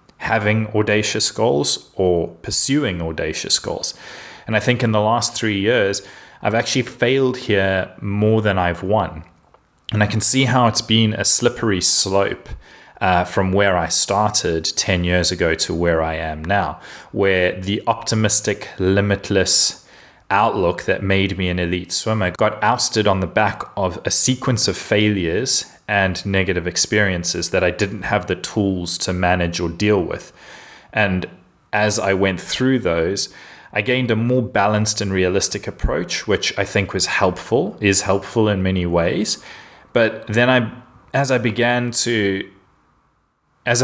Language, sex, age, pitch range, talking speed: English, male, 20-39, 95-110 Hz, 155 wpm